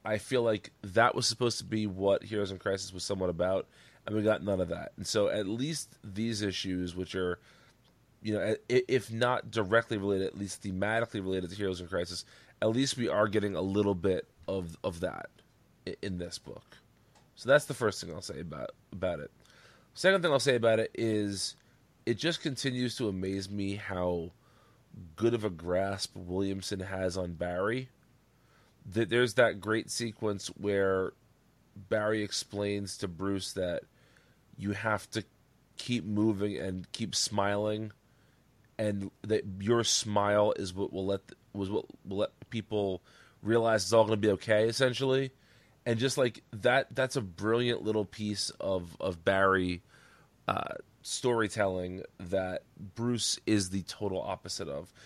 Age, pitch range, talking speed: 30-49, 95-120 Hz, 160 wpm